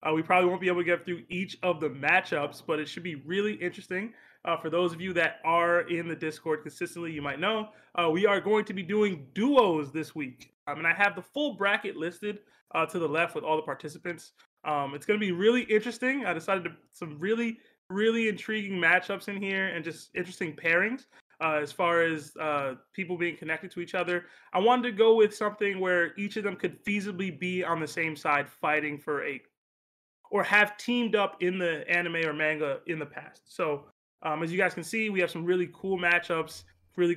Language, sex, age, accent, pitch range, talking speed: English, male, 20-39, American, 165-200 Hz, 220 wpm